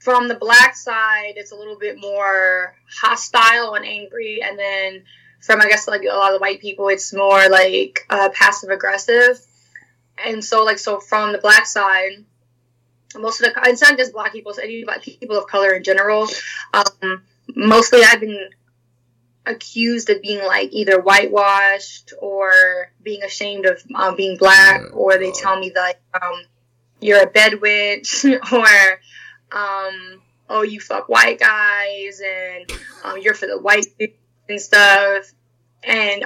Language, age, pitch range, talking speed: English, 10-29, 190-220 Hz, 155 wpm